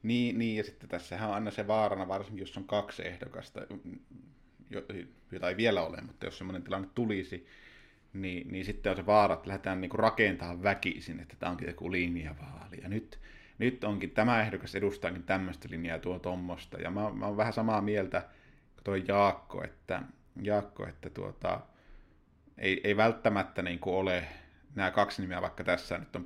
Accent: native